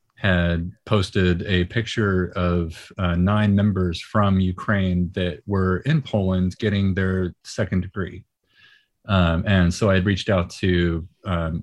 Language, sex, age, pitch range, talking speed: English, male, 30-49, 90-115 Hz, 140 wpm